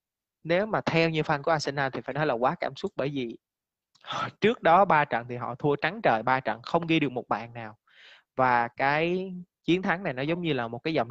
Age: 20-39